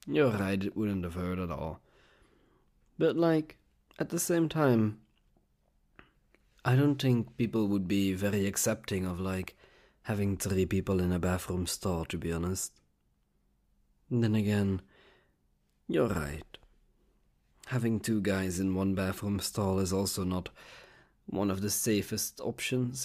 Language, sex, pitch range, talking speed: English, male, 85-110 Hz, 140 wpm